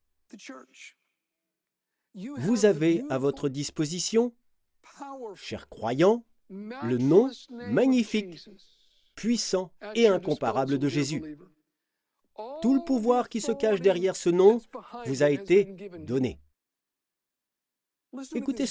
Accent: French